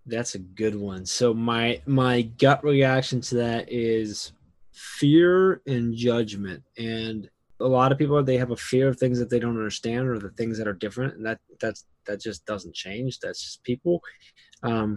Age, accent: 20-39, American